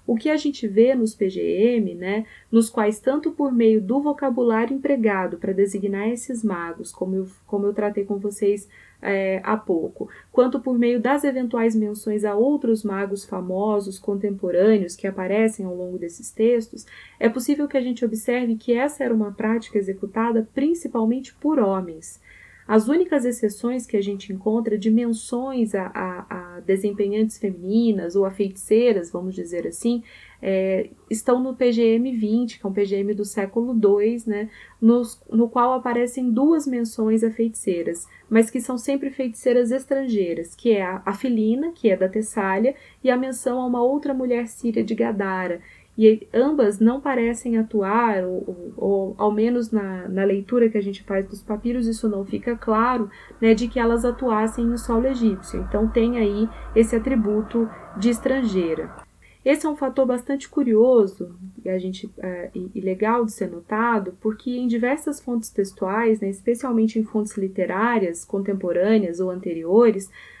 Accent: Brazilian